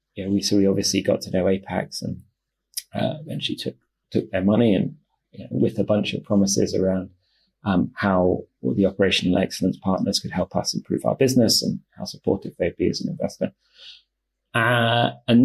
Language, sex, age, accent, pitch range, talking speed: English, male, 30-49, British, 95-110 Hz, 185 wpm